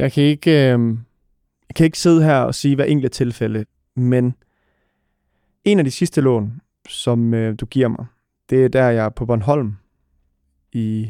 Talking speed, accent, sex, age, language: 180 wpm, native, male, 20-39, Danish